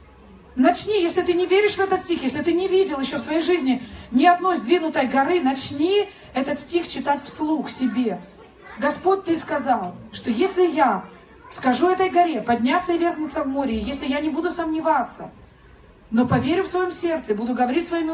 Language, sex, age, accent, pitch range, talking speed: Russian, female, 30-49, native, 245-350 Hz, 175 wpm